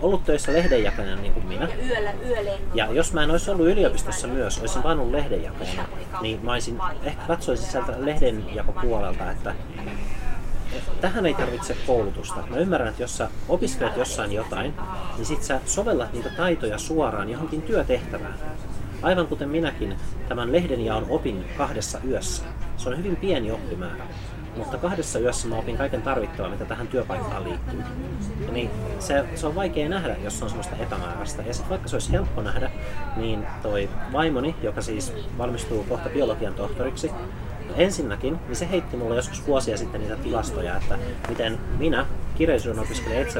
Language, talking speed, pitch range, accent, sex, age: Finnish, 160 wpm, 105-145 Hz, native, male, 30-49